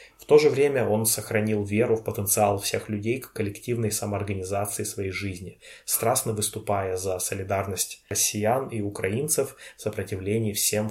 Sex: male